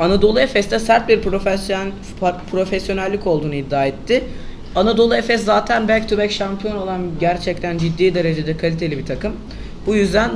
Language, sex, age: Turkish, female, 30-49